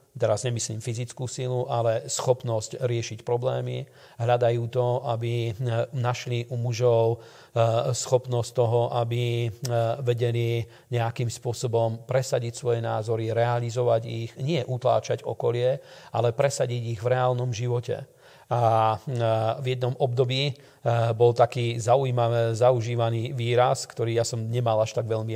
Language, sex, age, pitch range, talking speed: Slovak, male, 40-59, 115-125 Hz, 120 wpm